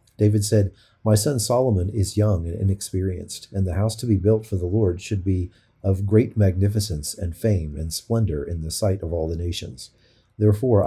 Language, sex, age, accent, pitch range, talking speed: English, male, 40-59, American, 90-110 Hz, 195 wpm